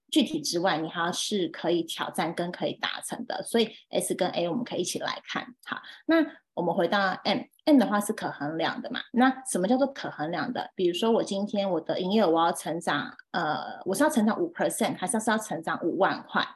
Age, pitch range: 20-39, 175-250 Hz